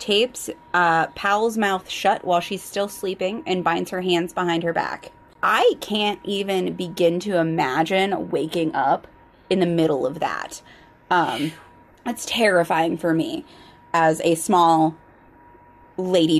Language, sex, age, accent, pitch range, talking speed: English, female, 20-39, American, 165-195 Hz, 140 wpm